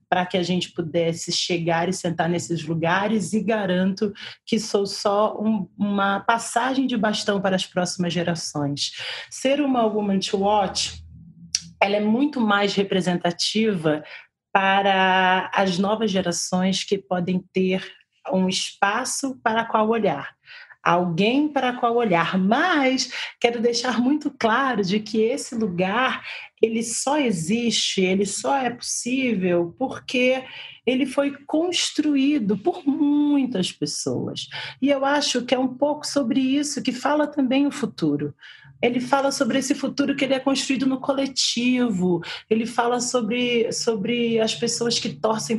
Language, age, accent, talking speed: Portuguese, 30-49, Brazilian, 135 wpm